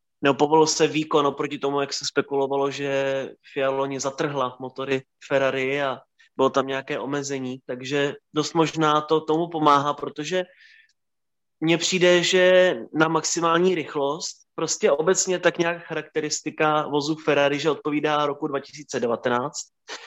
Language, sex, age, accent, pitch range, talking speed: Czech, male, 20-39, native, 140-155 Hz, 125 wpm